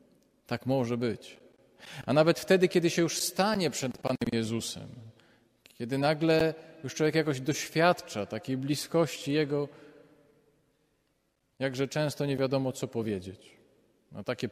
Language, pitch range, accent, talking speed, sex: Polish, 120-150 Hz, native, 120 wpm, male